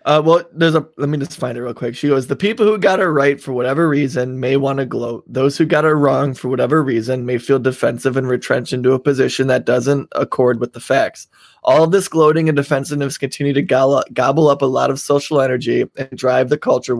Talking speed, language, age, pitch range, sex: 240 wpm, English, 20-39, 130-155 Hz, male